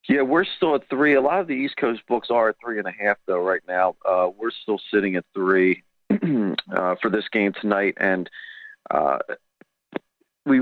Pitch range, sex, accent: 105-140 Hz, male, American